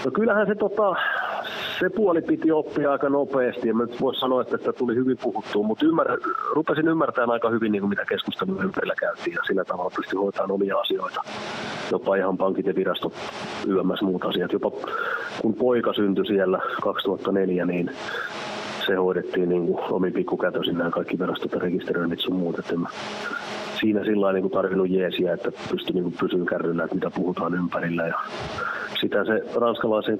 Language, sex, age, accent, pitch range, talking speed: Finnish, male, 30-49, native, 95-125 Hz, 155 wpm